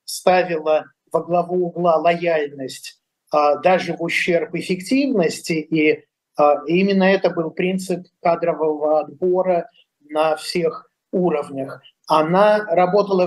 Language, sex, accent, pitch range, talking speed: Russian, male, native, 160-195 Hz, 110 wpm